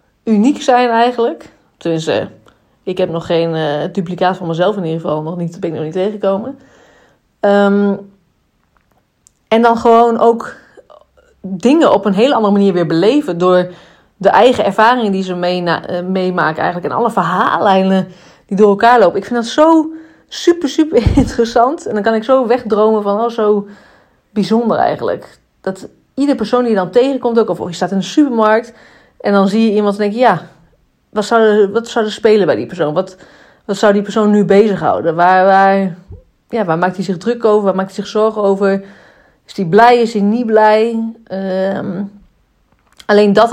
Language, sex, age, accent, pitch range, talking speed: Dutch, female, 30-49, Dutch, 190-230 Hz, 185 wpm